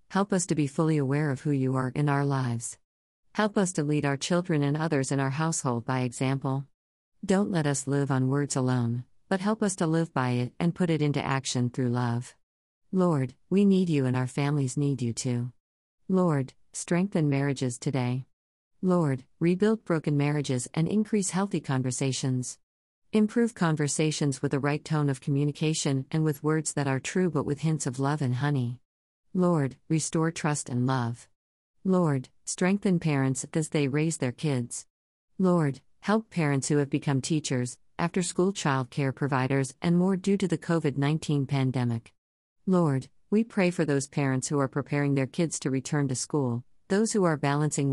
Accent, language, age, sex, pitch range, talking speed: American, English, 40-59, female, 130-165 Hz, 175 wpm